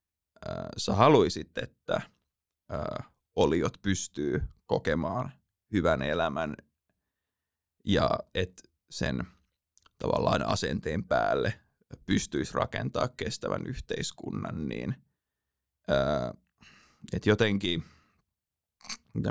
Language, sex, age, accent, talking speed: Finnish, male, 20-39, native, 65 wpm